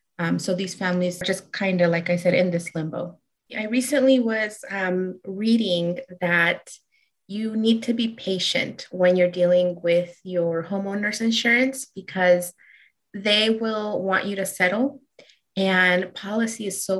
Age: 20-39